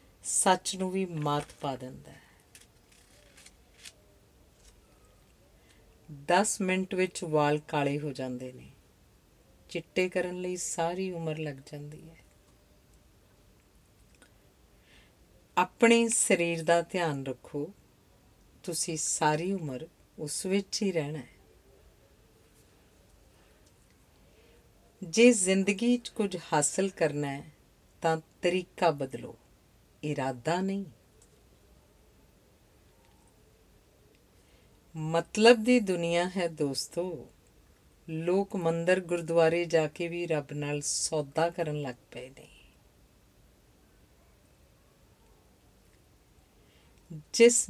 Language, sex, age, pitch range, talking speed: Punjabi, female, 50-69, 140-180 Hz, 75 wpm